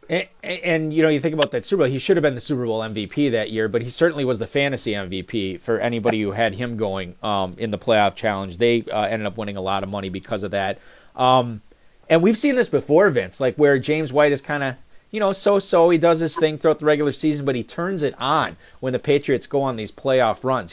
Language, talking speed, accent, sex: English, 255 wpm, American, male